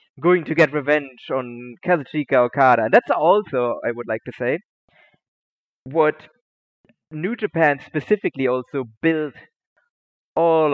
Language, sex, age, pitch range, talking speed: English, male, 20-39, 125-170 Hz, 125 wpm